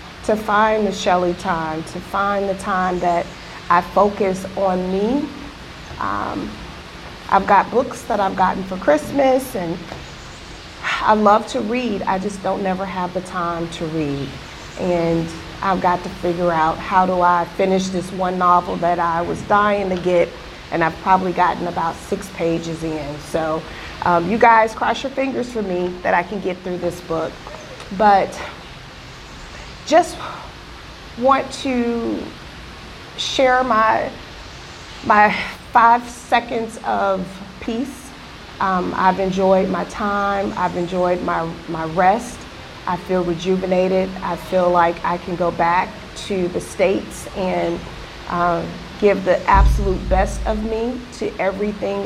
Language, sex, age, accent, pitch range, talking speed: English, female, 30-49, American, 175-210 Hz, 145 wpm